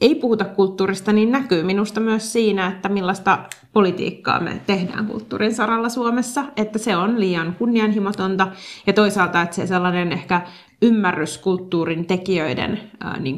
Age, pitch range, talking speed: 30-49, 175-215 Hz, 140 wpm